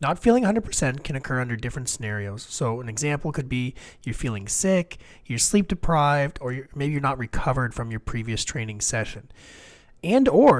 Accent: American